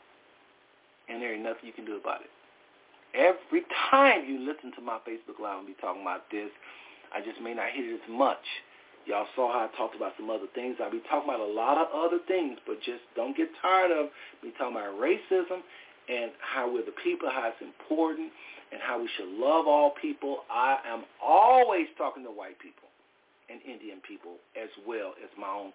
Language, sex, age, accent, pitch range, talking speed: English, male, 40-59, American, 120-195 Hz, 205 wpm